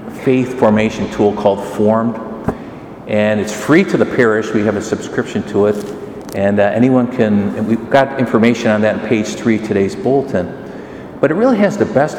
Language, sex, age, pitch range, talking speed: English, male, 50-69, 105-125 Hz, 190 wpm